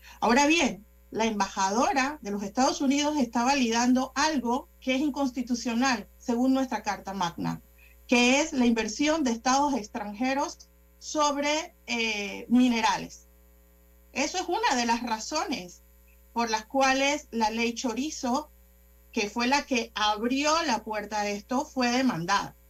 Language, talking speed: Spanish, 135 wpm